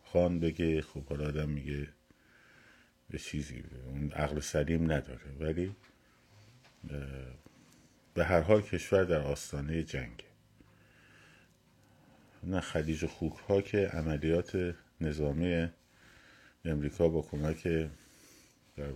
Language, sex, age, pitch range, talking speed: Persian, male, 50-69, 70-85 Hz, 95 wpm